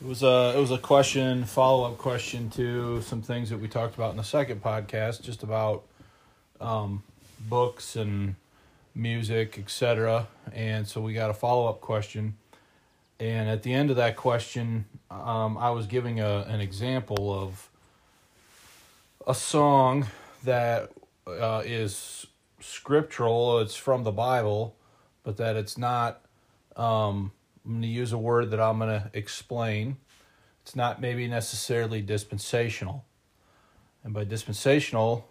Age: 30-49